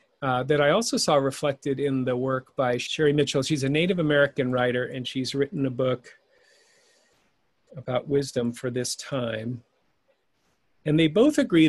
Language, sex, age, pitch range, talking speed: English, male, 40-59, 130-155 Hz, 160 wpm